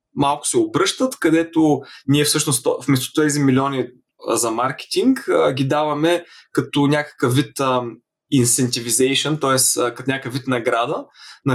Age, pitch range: 20-39, 125-160 Hz